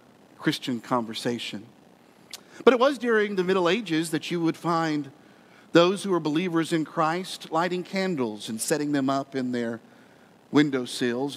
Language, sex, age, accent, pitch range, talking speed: English, male, 50-69, American, 140-185 Hz, 150 wpm